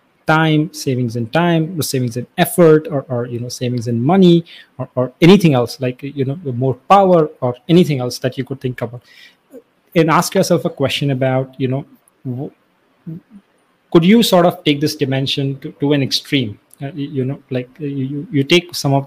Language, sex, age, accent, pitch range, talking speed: English, male, 30-49, Indian, 130-155 Hz, 190 wpm